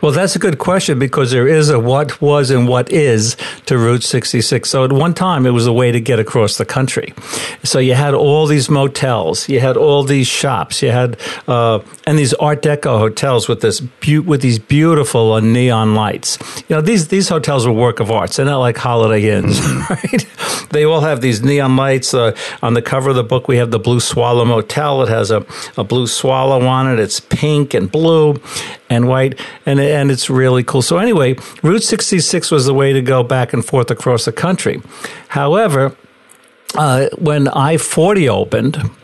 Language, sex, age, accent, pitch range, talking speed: English, male, 60-79, American, 120-145 Hz, 205 wpm